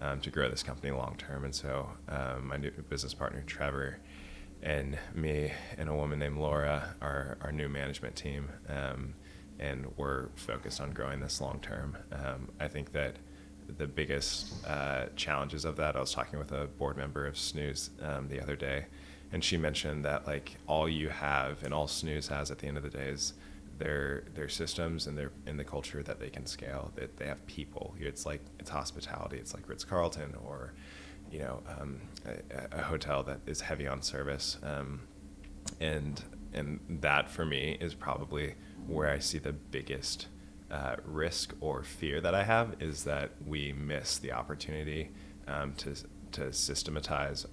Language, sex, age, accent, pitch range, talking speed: English, male, 20-39, American, 70-75 Hz, 185 wpm